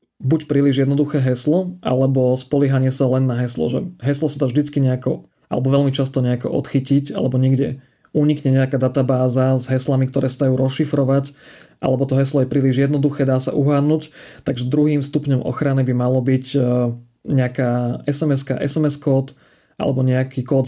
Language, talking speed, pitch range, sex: Slovak, 155 wpm, 130-140 Hz, male